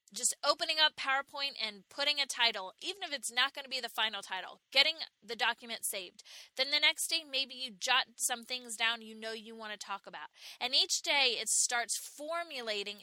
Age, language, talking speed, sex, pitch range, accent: 20-39, English, 205 wpm, female, 215-270 Hz, American